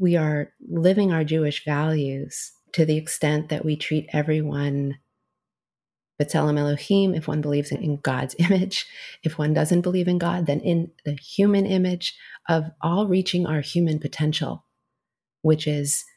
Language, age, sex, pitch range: English, 30-49, female, 145-175 Hz